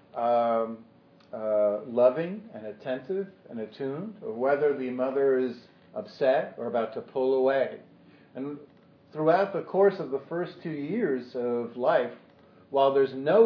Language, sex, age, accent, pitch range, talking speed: English, male, 50-69, American, 125-160 Hz, 145 wpm